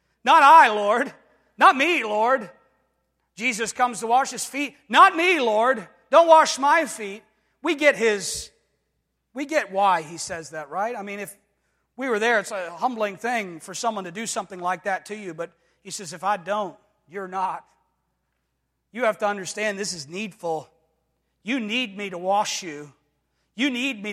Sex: male